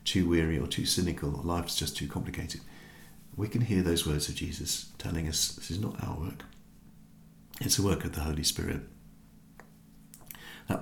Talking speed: 175 wpm